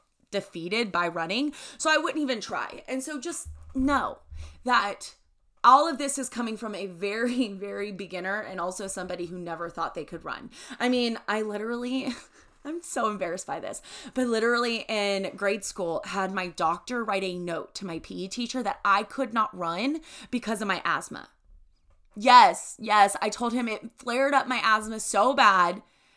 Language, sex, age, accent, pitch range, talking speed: English, female, 20-39, American, 195-265 Hz, 175 wpm